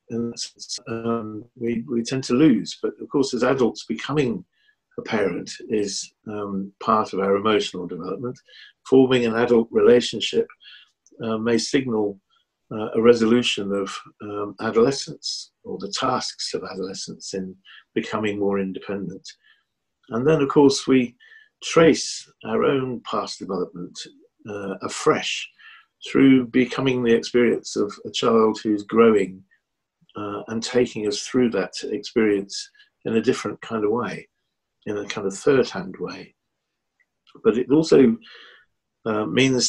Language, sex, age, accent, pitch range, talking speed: English, male, 50-69, British, 105-130 Hz, 135 wpm